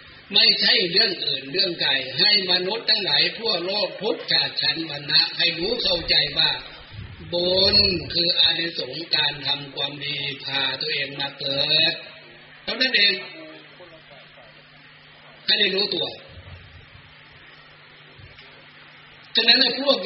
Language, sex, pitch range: Thai, male, 150-185 Hz